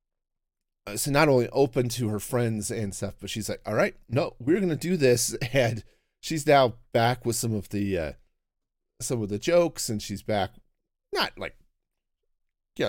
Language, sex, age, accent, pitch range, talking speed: English, male, 40-59, American, 95-135 Hz, 185 wpm